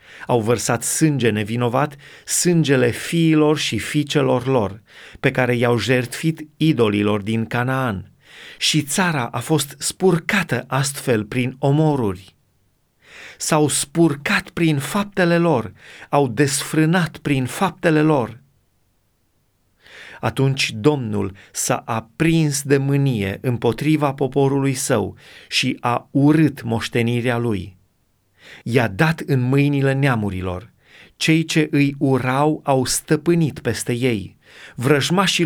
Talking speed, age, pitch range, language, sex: 105 wpm, 30-49, 115-150 Hz, Romanian, male